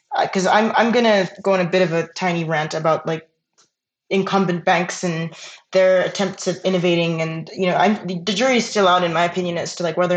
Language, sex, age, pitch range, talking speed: English, female, 20-39, 175-195 Hz, 235 wpm